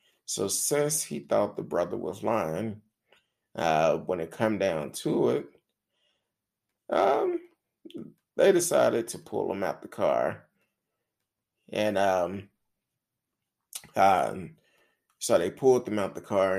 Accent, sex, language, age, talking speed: American, male, English, 30-49, 125 wpm